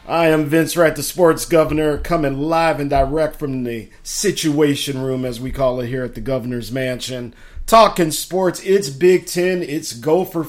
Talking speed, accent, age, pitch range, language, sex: 175 wpm, American, 40-59, 120-155 Hz, English, male